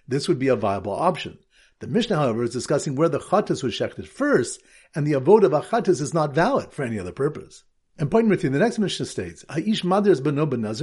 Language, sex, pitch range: English, male, 135-195 Hz